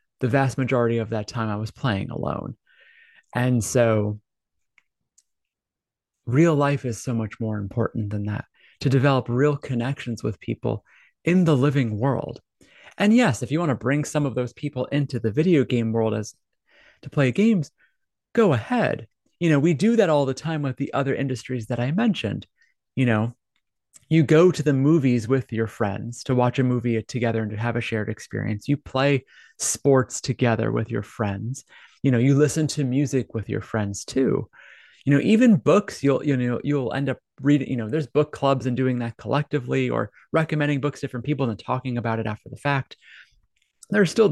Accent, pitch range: American, 115-145 Hz